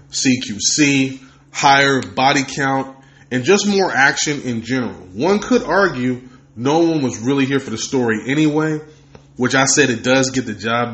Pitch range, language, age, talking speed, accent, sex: 120-145 Hz, English, 30-49, 165 wpm, American, male